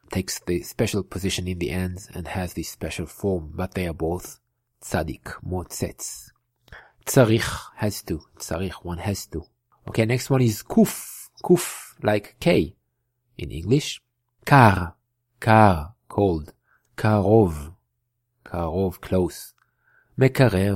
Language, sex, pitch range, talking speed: English, male, 90-120 Hz, 120 wpm